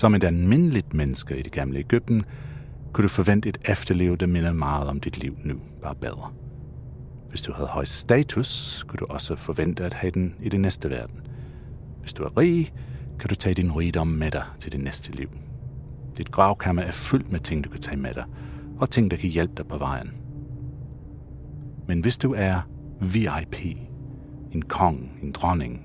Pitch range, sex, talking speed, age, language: 85-135 Hz, male, 190 wpm, 40-59, Danish